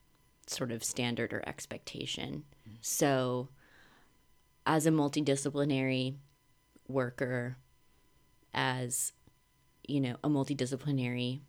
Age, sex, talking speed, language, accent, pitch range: 20-39, female, 80 wpm, English, American, 125-145 Hz